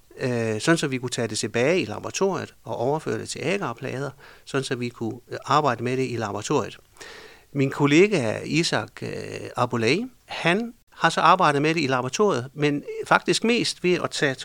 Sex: male